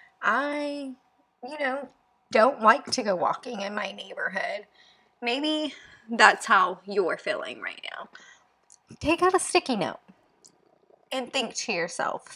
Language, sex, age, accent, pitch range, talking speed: English, female, 20-39, American, 185-260 Hz, 130 wpm